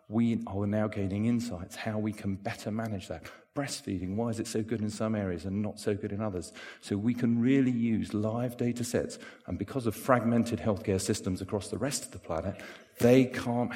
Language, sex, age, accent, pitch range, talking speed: English, male, 40-59, British, 90-110 Hz, 210 wpm